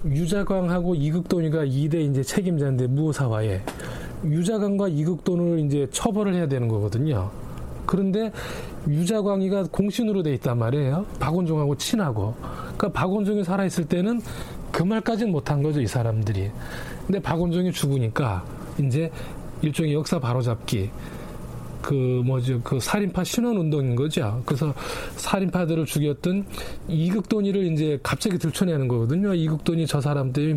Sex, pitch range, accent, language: male, 135-180 Hz, native, Korean